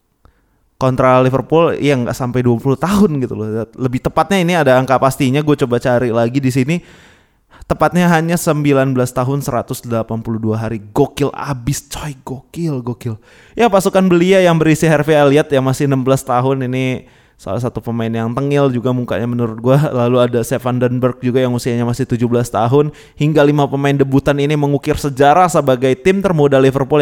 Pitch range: 120-145 Hz